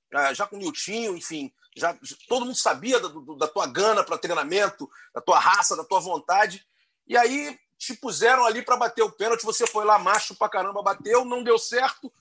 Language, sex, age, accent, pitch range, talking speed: Portuguese, male, 40-59, Brazilian, 165-245 Hz, 195 wpm